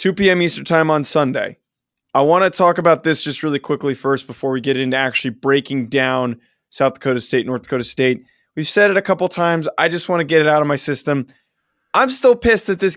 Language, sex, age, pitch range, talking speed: English, male, 20-39, 135-170 Hz, 230 wpm